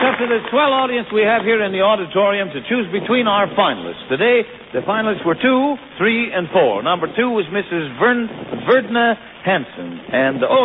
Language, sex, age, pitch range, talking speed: English, male, 60-79, 140-215 Hz, 185 wpm